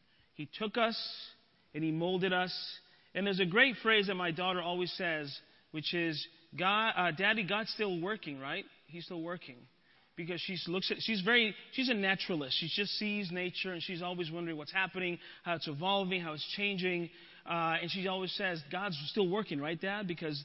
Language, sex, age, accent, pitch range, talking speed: English, male, 30-49, American, 175-245 Hz, 185 wpm